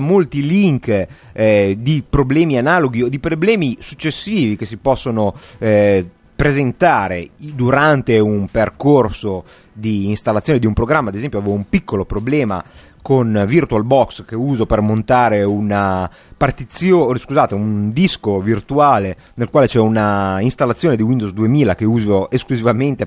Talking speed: 140 wpm